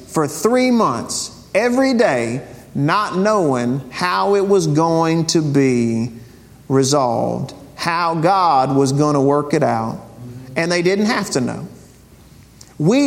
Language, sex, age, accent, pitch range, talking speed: English, male, 50-69, American, 150-240 Hz, 135 wpm